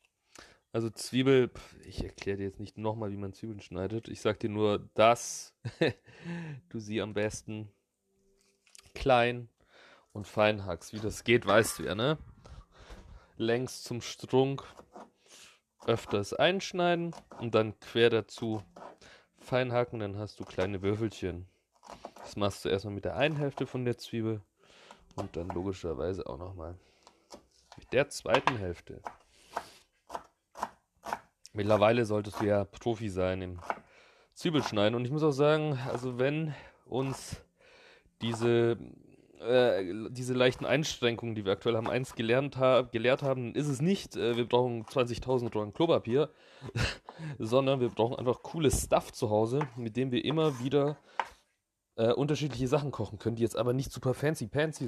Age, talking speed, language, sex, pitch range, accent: 30-49, 140 wpm, German, male, 105-130 Hz, German